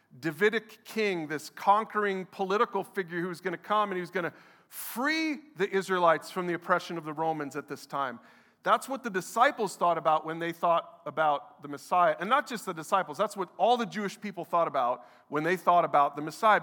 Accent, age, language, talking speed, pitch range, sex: American, 40-59, English, 205 wpm, 155-200 Hz, male